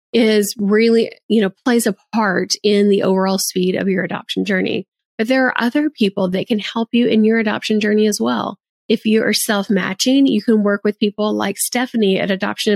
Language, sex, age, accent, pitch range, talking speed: English, female, 30-49, American, 190-225 Hz, 205 wpm